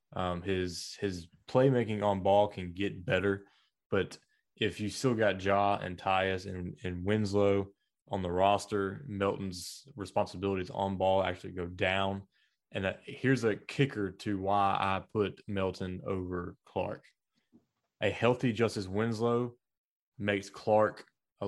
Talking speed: 135 wpm